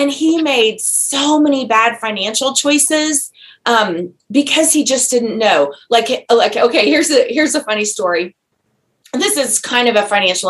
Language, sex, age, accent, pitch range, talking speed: English, female, 30-49, American, 235-325 Hz, 165 wpm